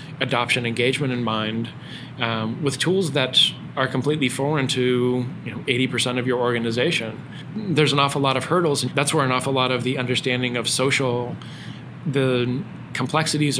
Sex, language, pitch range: male, English, 120-140 Hz